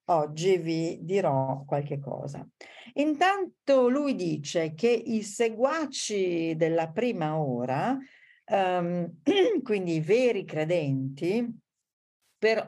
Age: 50-69